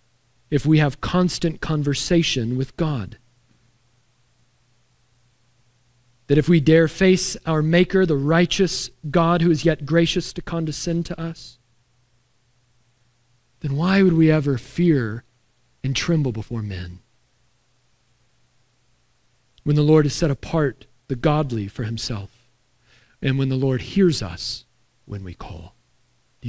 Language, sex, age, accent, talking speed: English, male, 40-59, American, 125 wpm